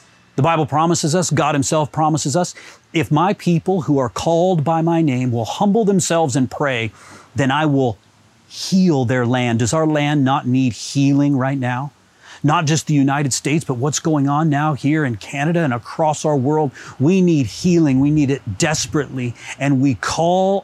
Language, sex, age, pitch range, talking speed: English, male, 30-49, 120-165 Hz, 185 wpm